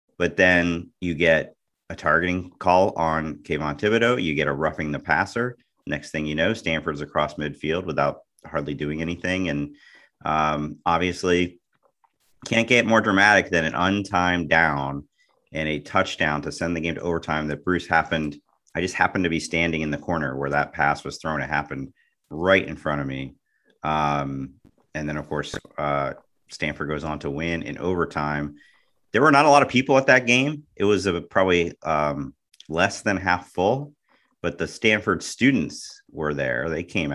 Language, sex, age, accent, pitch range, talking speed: English, male, 40-59, American, 75-95 Hz, 180 wpm